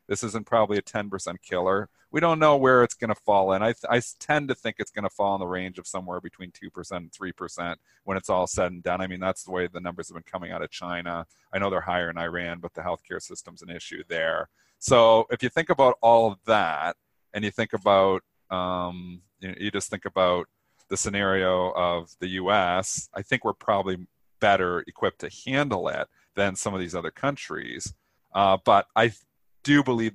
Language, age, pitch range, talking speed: English, 40-59, 90-110 Hz, 220 wpm